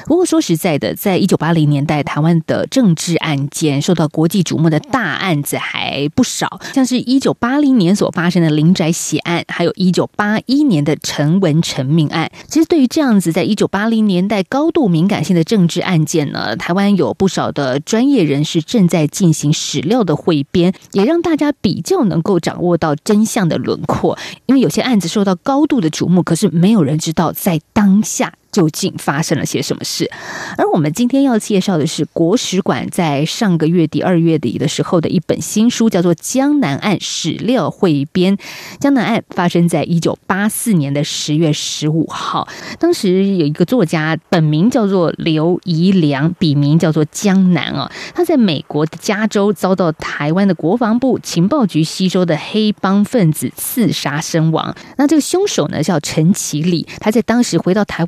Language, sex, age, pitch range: Chinese, female, 20-39, 160-215 Hz